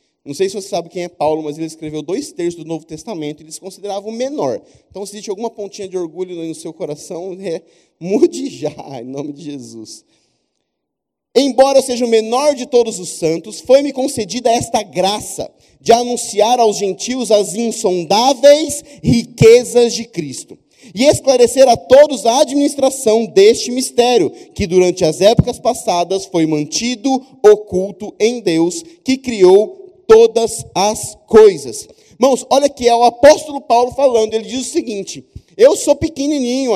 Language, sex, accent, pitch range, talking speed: Portuguese, male, Brazilian, 200-300 Hz, 160 wpm